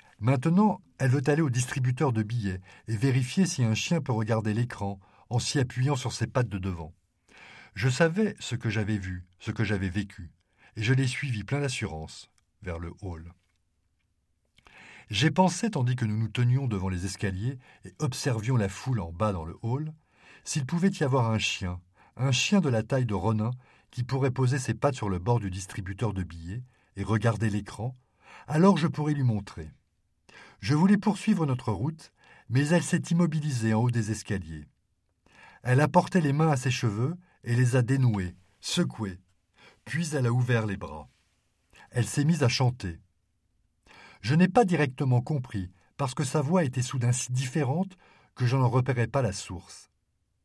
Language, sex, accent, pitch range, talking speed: Dutch, male, French, 100-140 Hz, 180 wpm